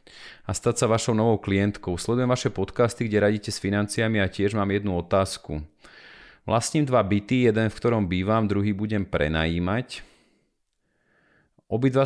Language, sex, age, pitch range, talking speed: Slovak, male, 30-49, 95-115 Hz, 150 wpm